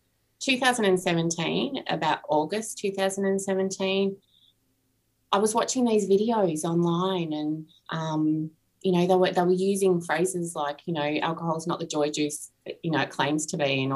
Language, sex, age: English, female, 20-39